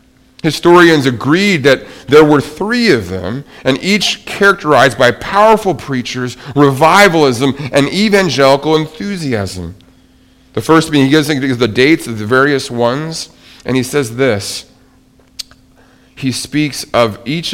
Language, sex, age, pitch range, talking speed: English, male, 40-59, 105-145 Hz, 125 wpm